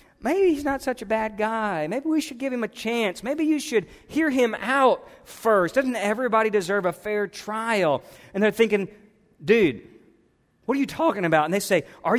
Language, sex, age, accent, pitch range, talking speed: English, male, 40-59, American, 175-215 Hz, 195 wpm